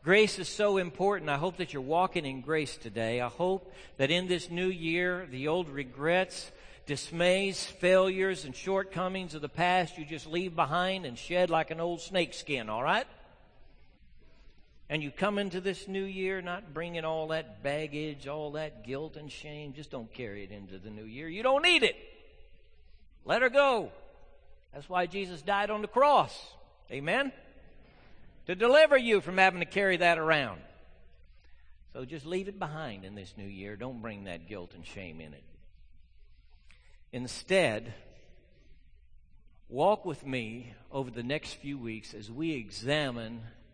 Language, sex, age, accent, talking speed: English, male, 60-79, American, 165 wpm